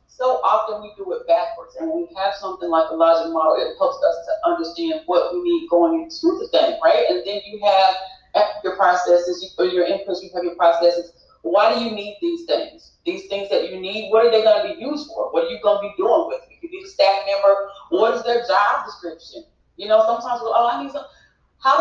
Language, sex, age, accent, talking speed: English, female, 30-49, American, 245 wpm